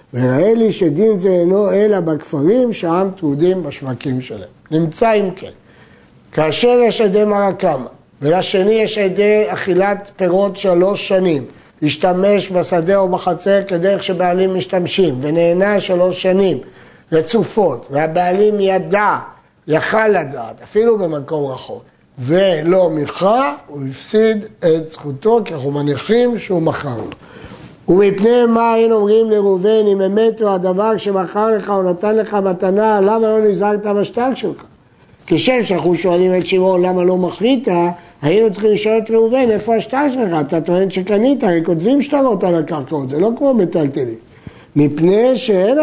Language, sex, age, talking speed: Hebrew, male, 60-79, 140 wpm